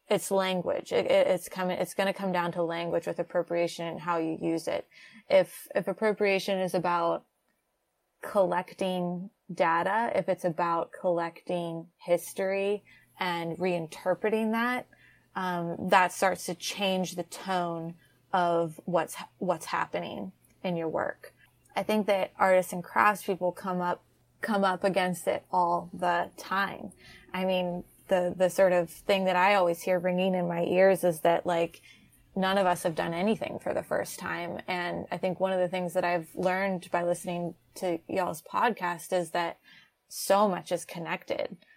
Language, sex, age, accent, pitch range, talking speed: English, female, 20-39, American, 170-190 Hz, 160 wpm